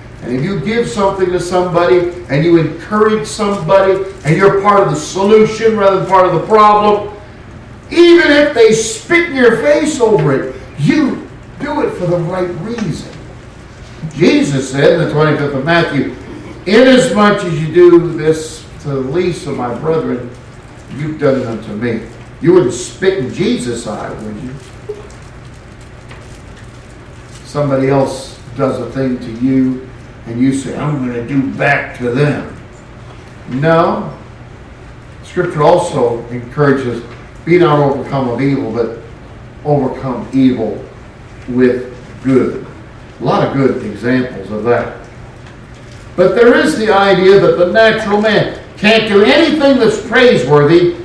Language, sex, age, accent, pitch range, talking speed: English, male, 50-69, American, 125-195 Hz, 145 wpm